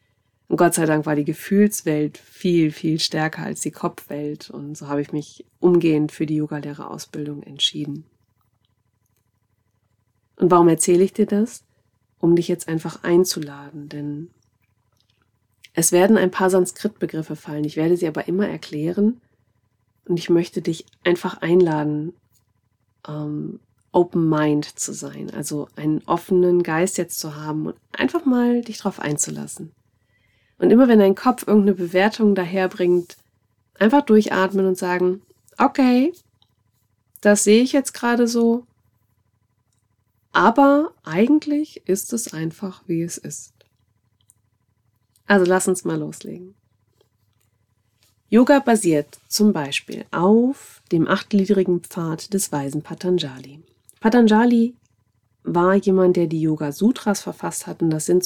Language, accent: German, German